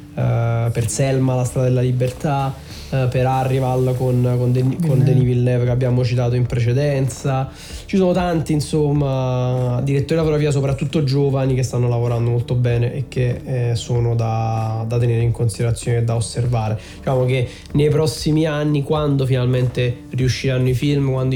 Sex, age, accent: male, 20-39, native